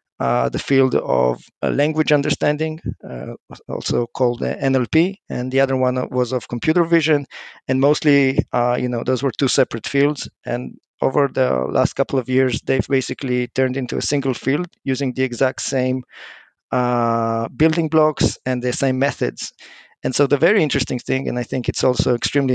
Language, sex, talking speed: English, male, 175 wpm